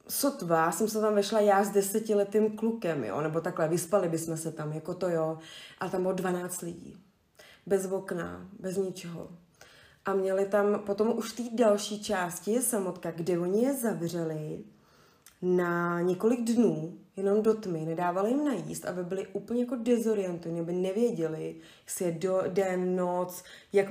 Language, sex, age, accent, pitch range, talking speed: Czech, female, 20-39, native, 170-200 Hz, 160 wpm